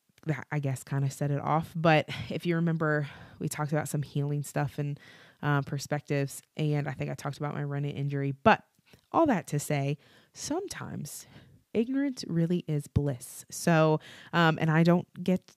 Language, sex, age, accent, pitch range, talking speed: English, female, 20-39, American, 145-170 Hz, 175 wpm